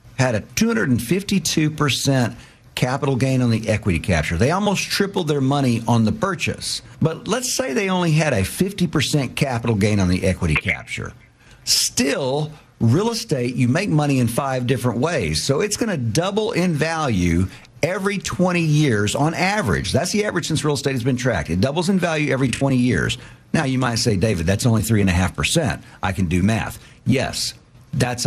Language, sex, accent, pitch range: English, male, American, 105-150 Hz